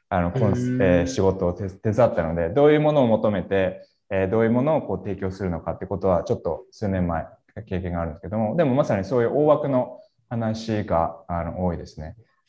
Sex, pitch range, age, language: male, 95-150 Hz, 20-39, Japanese